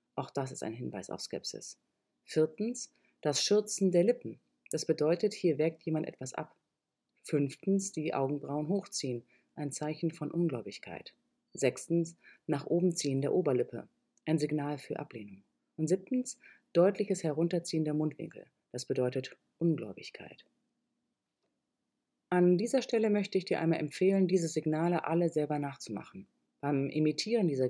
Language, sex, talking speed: German, female, 135 wpm